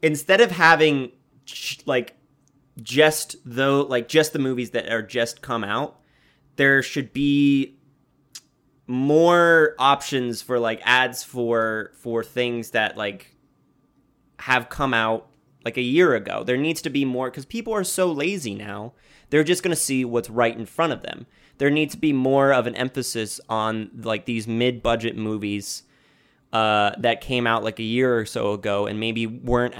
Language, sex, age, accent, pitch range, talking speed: English, male, 20-39, American, 115-145 Hz, 165 wpm